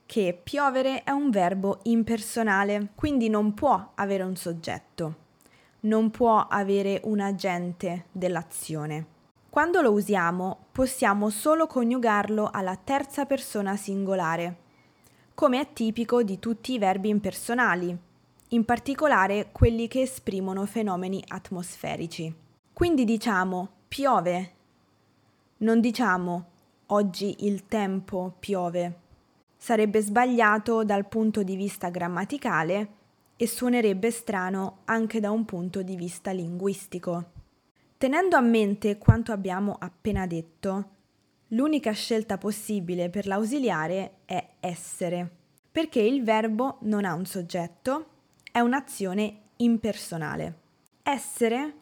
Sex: female